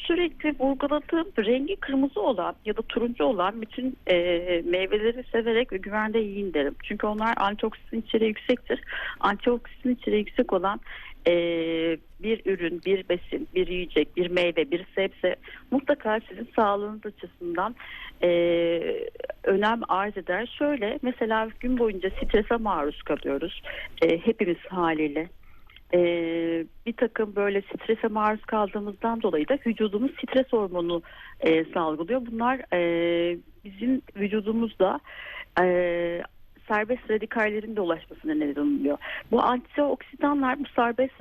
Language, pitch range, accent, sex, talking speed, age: Turkish, 170-230 Hz, native, female, 115 wpm, 60-79